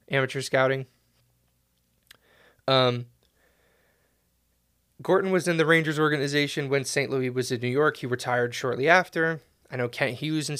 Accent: American